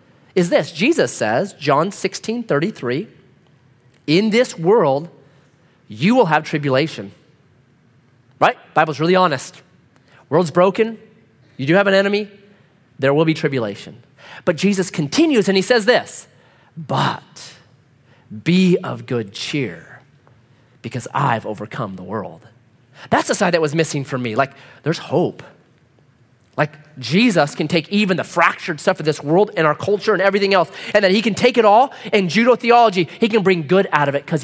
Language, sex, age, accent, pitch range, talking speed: English, male, 30-49, American, 130-190 Hz, 160 wpm